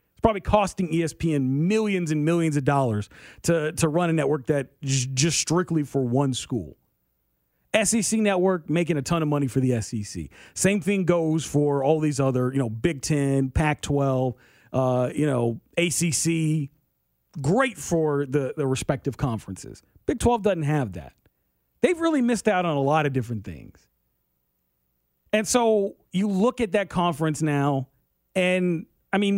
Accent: American